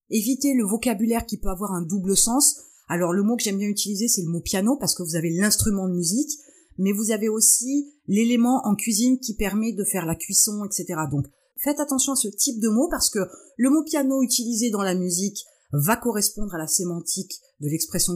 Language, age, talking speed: French, 30-49, 230 wpm